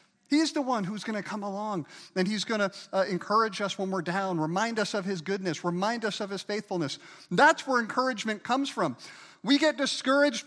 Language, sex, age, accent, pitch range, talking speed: English, male, 50-69, American, 150-205 Hz, 200 wpm